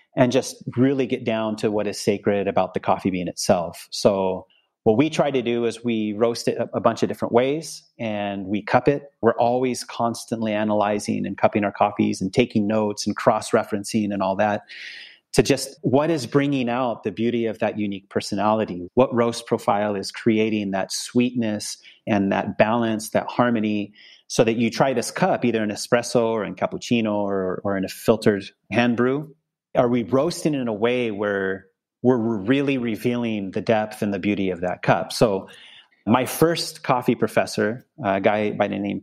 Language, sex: English, male